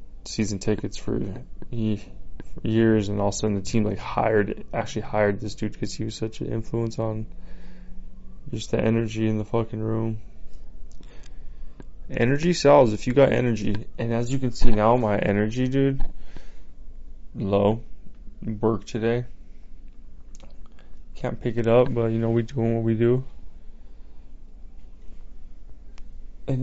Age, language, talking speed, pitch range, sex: 20-39, English, 135 wpm, 90-120 Hz, male